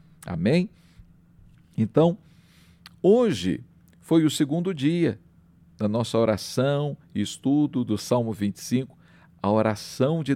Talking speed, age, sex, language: 105 wpm, 50-69, male, Portuguese